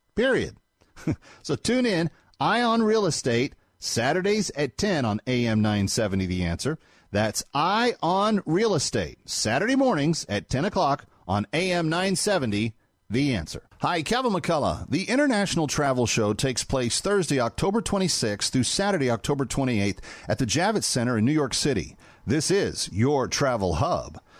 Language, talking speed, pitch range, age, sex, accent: English, 150 wpm, 115-175 Hz, 40-59, male, American